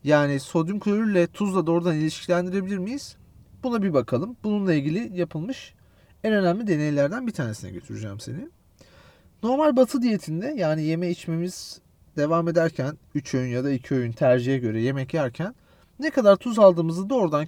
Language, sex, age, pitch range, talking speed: Turkish, male, 40-59, 125-190 Hz, 150 wpm